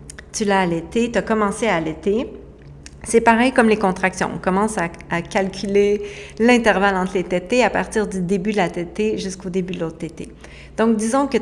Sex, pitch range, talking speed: female, 170-210 Hz, 195 wpm